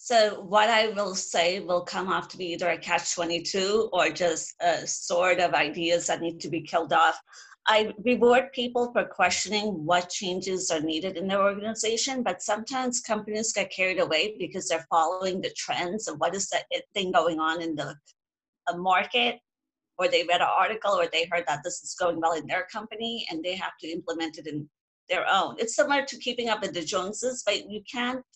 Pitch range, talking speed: 170-210 Hz, 200 wpm